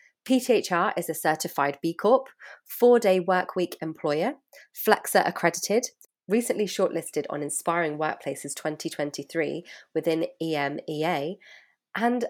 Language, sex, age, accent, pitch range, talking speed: English, female, 20-39, British, 155-200 Hz, 100 wpm